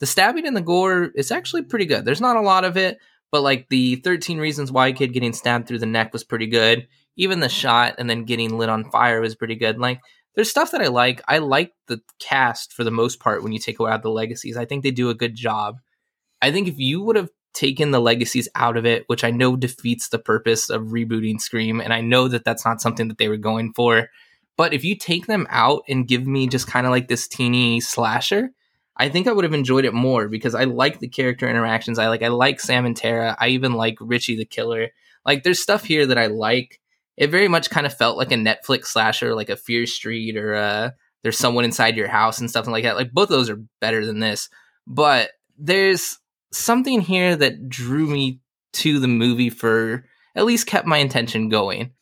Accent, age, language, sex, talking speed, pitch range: American, 20-39, English, male, 230 wpm, 115-140 Hz